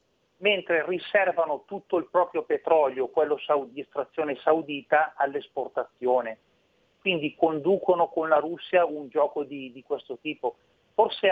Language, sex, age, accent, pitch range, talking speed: Italian, male, 40-59, native, 140-175 Hz, 120 wpm